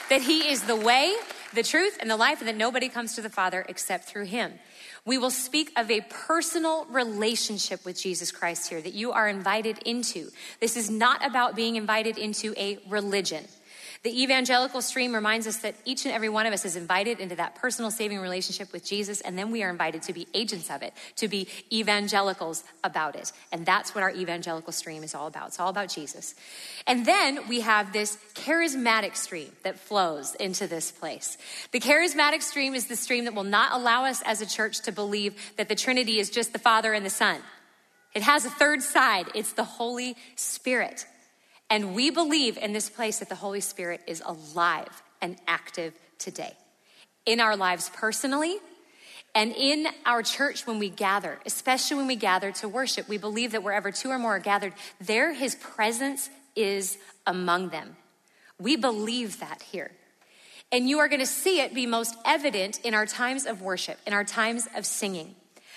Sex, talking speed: female, 195 wpm